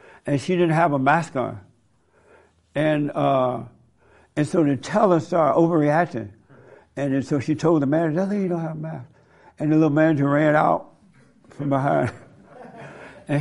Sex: male